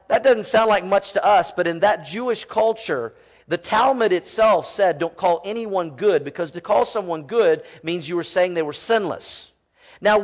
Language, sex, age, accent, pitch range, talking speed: English, male, 40-59, American, 170-220 Hz, 195 wpm